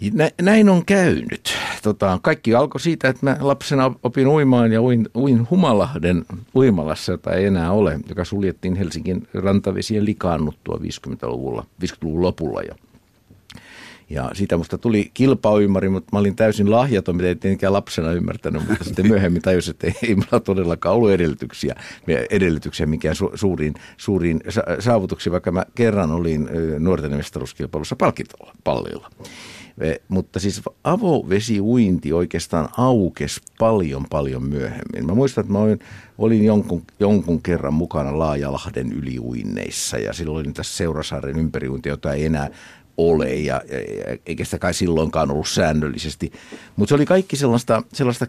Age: 60-79